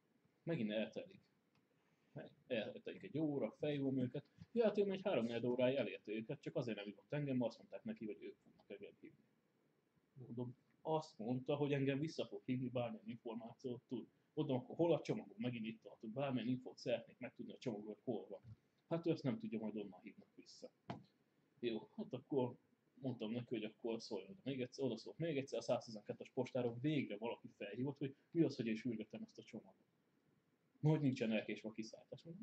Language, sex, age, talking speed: Hungarian, male, 30-49, 180 wpm